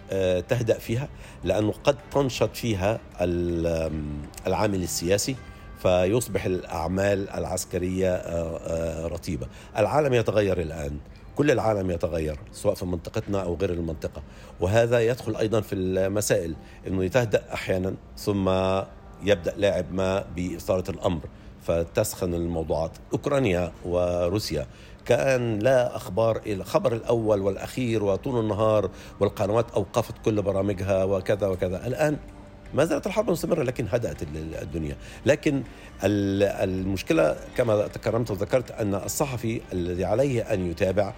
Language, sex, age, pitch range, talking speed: Arabic, male, 50-69, 90-115 Hz, 110 wpm